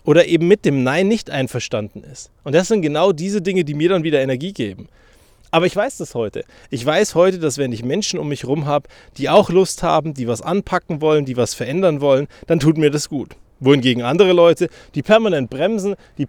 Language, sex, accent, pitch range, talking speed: German, male, German, 135-190 Hz, 220 wpm